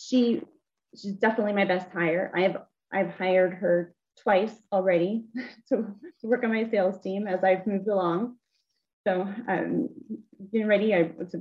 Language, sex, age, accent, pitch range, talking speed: English, female, 30-49, American, 175-215 Hz, 145 wpm